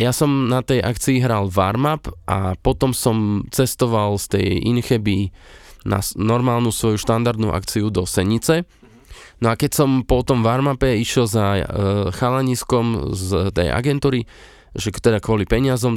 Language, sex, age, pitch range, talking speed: Slovak, male, 20-39, 110-140 Hz, 145 wpm